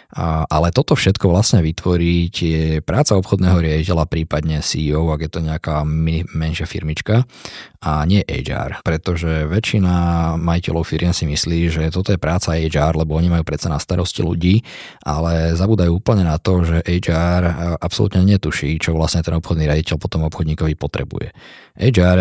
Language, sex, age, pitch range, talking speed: Slovak, male, 20-39, 80-95 Hz, 150 wpm